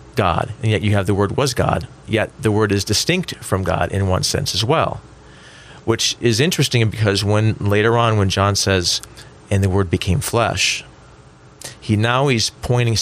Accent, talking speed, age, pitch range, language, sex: American, 185 wpm, 40-59, 95-125 Hz, English, male